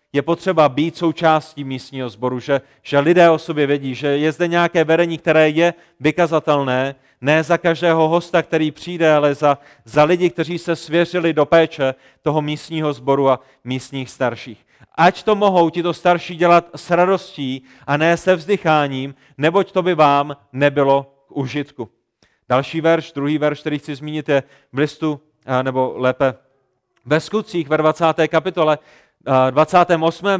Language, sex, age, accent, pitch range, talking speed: Czech, male, 30-49, native, 140-175 Hz, 155 wpm